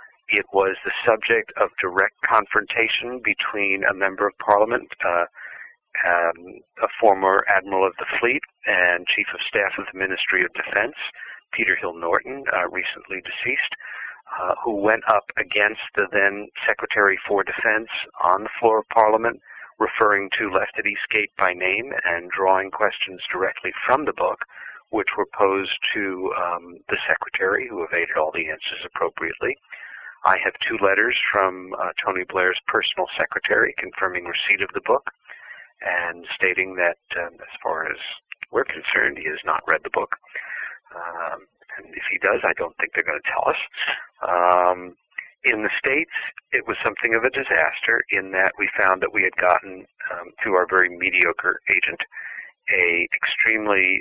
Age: 50-69